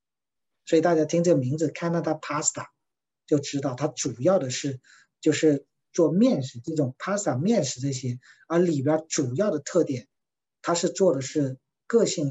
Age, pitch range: 50-69, 135-170 Hz